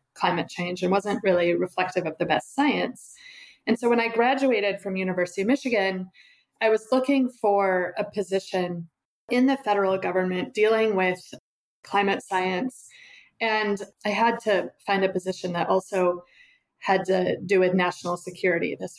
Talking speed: 155 wpm